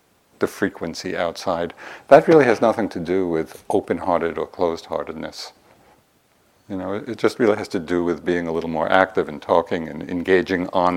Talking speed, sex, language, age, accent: 175 wpm, male, English, 50-69, American